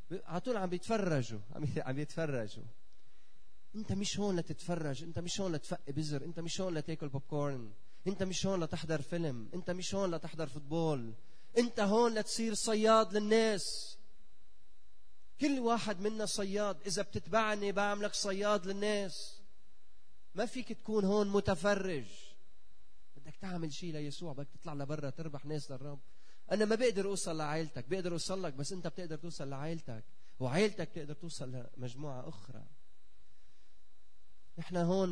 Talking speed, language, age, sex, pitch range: 135 wpm, Arabic, 30-49, male, 145-200 Hz